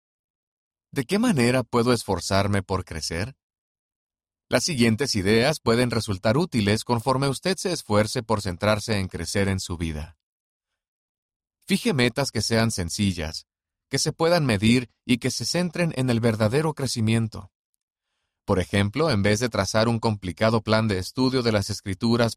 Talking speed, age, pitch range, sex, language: 150 wpm, 40-59, 100-130 Hz, male, Spanish